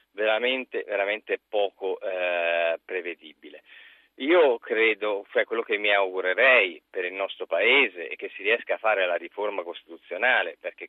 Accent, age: native, 40-59